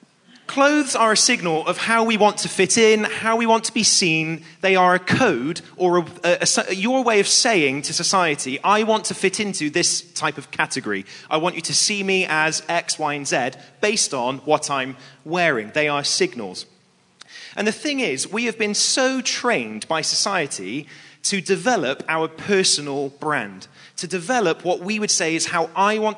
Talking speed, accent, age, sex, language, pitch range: 190 wpm, British, 30-49, male, English, 155-210 Hz